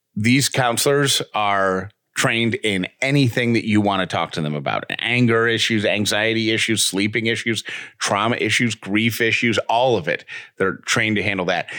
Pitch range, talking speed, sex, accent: 105-135 Hz, 165 wpm, male, American